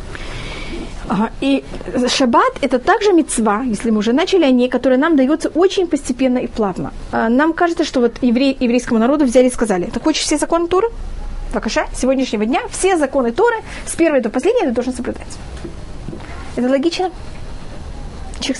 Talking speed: 170 wpm